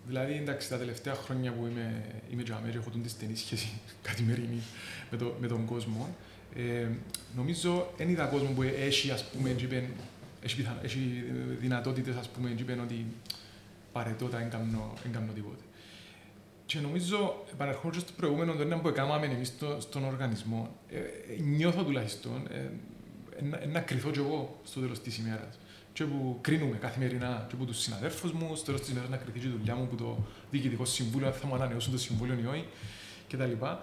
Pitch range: 115-155 Hz